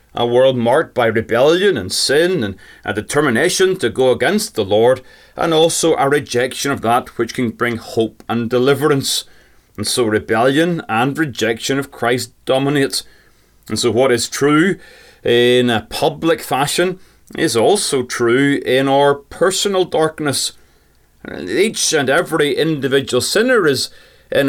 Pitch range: 120-150 Hz